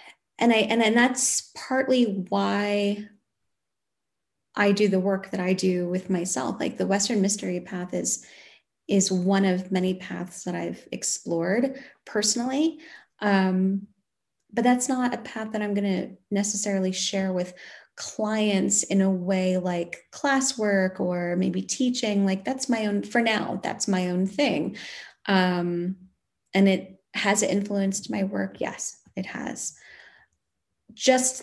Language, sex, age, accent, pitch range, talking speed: English, female, 20-39, American, 185-215 Hz, 140 wpm